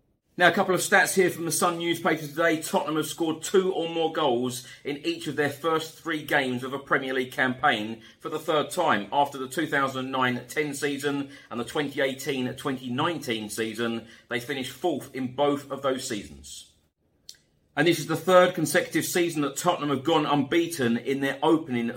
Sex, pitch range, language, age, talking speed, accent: male, 110-150 Hz, English, 40-59, 180 wpm, British